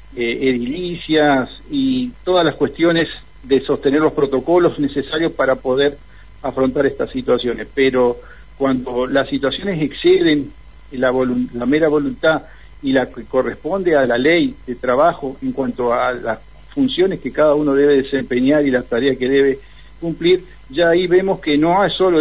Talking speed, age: 150 wpm, 50-69